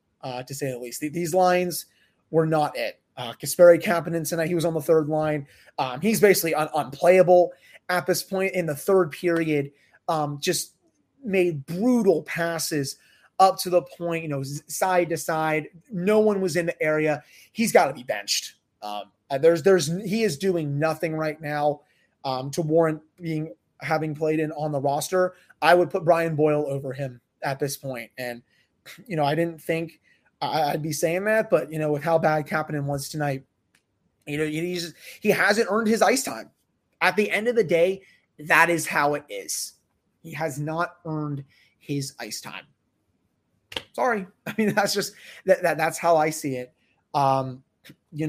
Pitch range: 150-180 Hz